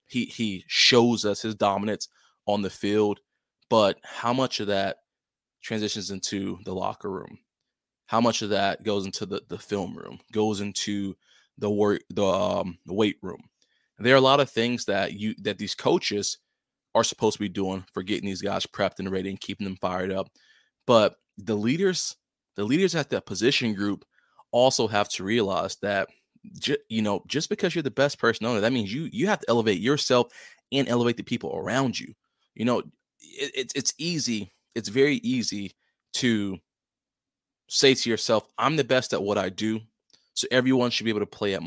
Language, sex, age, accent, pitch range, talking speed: English, male, 20-39, American, 100-125 Hz, 185 wpm